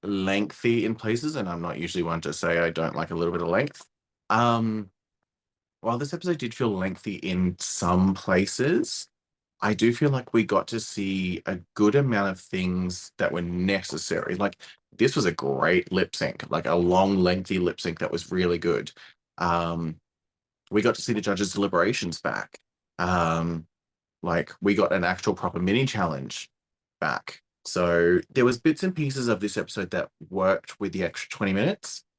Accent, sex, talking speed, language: Australian, male, 180 wpm, English